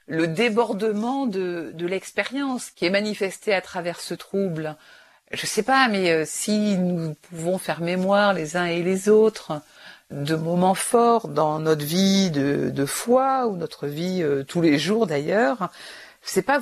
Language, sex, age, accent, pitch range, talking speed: French, female, 50-69, French, 165-215 Hz, 165 wpm